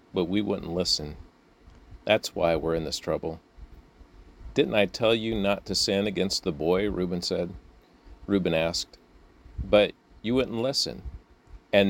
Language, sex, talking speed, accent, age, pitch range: English, male, 145 wpm, American, 40-59, 85-100 Hz